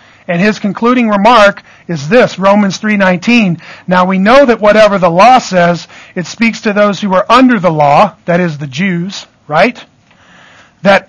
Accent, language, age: American, English, 40-59